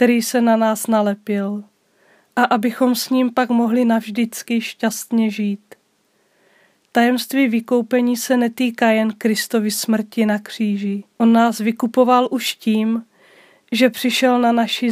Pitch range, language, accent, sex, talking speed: 215-245 Hz, Czech, native, female, 130 wpm